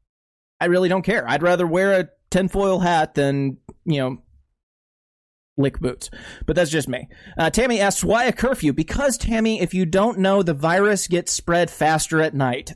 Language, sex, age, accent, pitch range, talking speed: English, male, 30-49, American, 145-200 Hz, 180 wpm